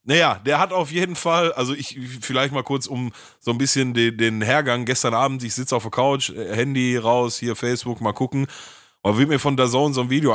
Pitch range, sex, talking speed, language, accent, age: 115-140 Hz, male, 225 wpm, German, German, 30-49